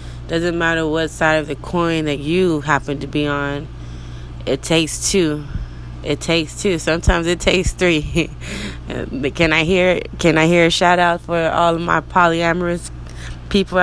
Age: 20-39